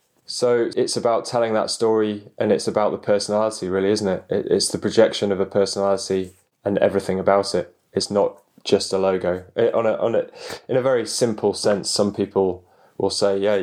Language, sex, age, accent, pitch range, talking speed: English, male, 10-29, British, 90-105 Hz, 195 wpm